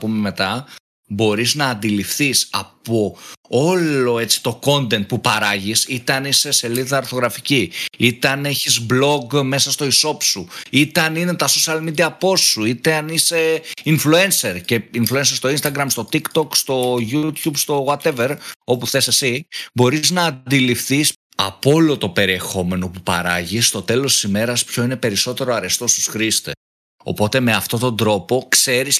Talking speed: 155 wpm